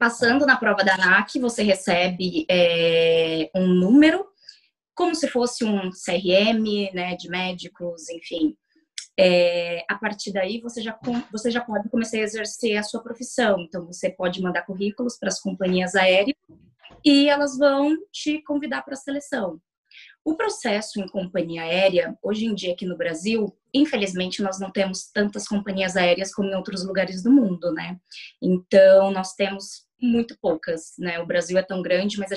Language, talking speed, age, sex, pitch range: Portuguese, 165 wpm, 20-39, female, 180-235 Hz